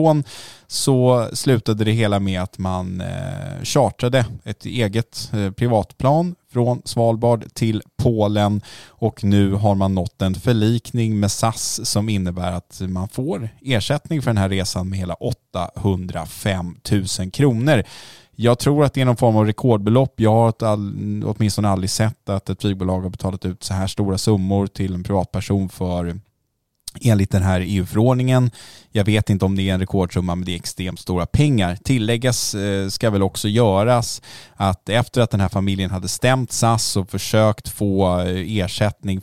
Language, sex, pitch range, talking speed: Swedish, male, 95-115 Hz, 160 wpm